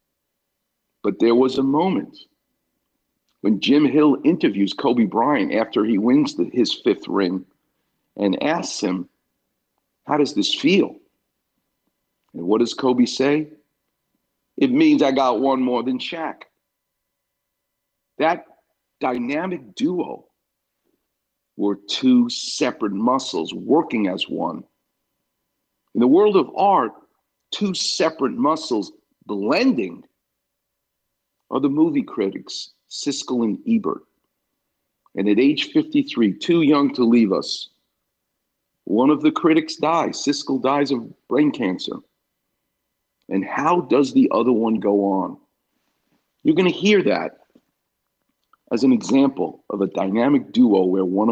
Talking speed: 120 wpm